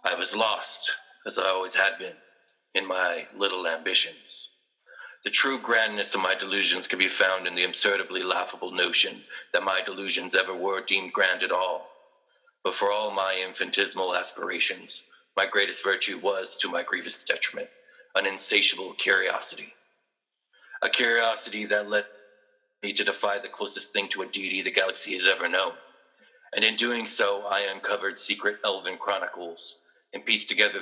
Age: 40-59